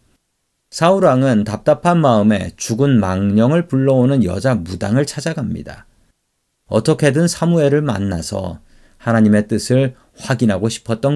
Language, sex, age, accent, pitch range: Korean, male, 40-59, native, 105-140 Hz